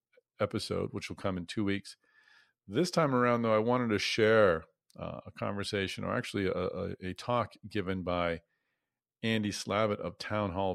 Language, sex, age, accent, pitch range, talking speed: English, male, 40-59, American, 90-110 Hz, 165 wpm